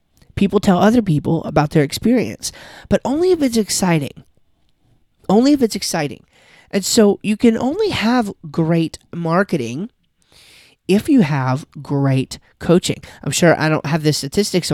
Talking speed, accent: 145 wpm, American